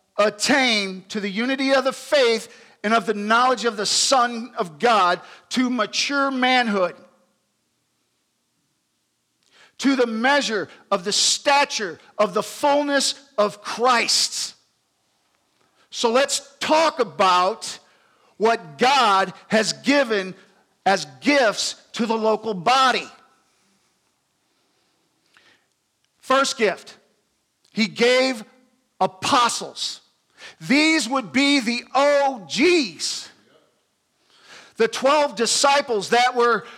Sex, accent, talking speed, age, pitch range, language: male, American, 95 wpm, 50-69, 210-270 Hz, English